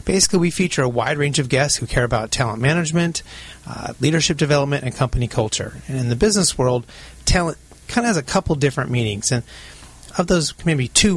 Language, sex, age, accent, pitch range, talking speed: English, male, 30-49, American, 120-145 Hz, 200 wpm